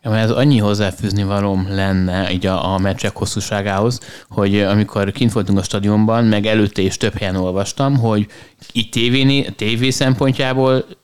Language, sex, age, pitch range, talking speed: Hungarian, male, 20-39, 105-130 Hz, 135 wpm